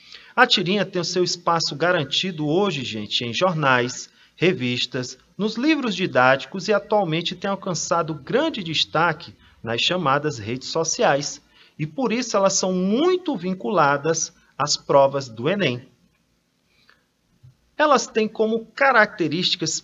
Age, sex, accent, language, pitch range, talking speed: 40-59, male, Brazilian, Portuguese, 135-195 Hz, 120 wpm